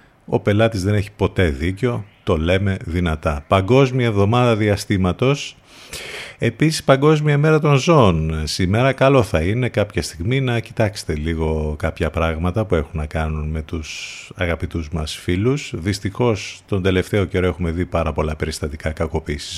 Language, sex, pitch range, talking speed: Greek, male, 85-115 Hz, 145 wpm